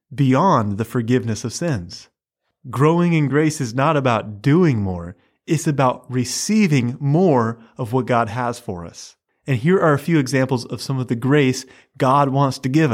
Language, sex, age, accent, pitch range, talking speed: English, male, 30-49, American, 115-150 Hz, 175 wpm